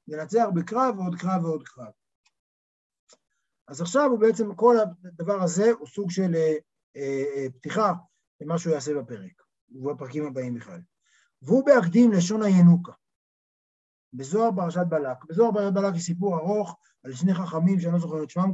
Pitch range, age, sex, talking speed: 150-200 Hz, 60-79, male, 150 wpm